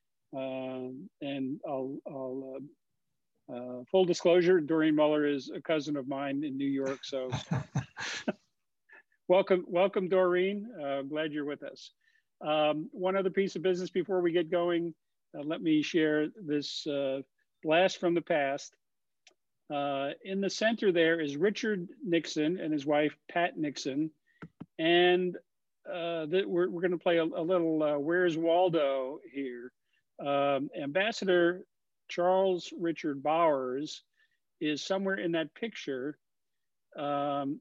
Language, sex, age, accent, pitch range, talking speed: English, male, 50-69, American, 140-175 Hz, 140 wpm